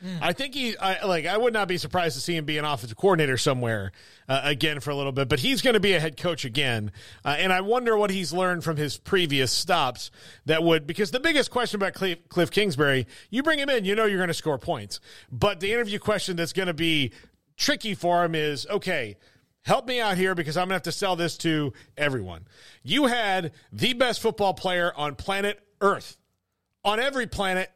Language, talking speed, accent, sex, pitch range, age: English, 230 wpm, American, male, 145-205 Hz, 40-59